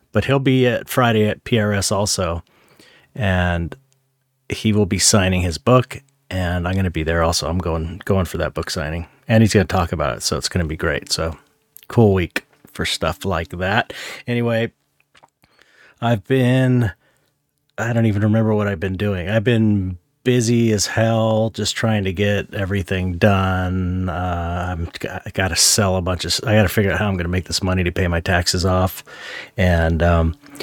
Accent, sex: American, male